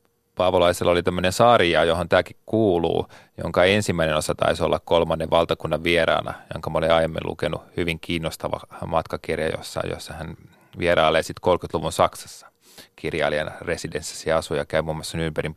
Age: 30-49